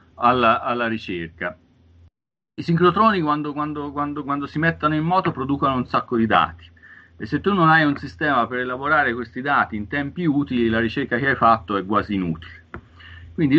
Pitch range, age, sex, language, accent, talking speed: 95-125 Hz, 40-59, male, Italian, native, 170 wpm